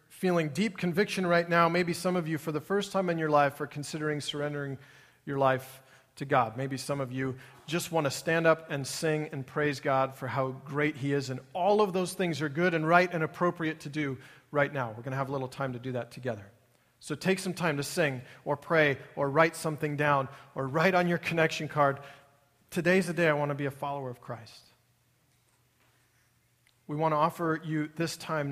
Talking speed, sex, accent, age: 220 wpm, male, American, 40-59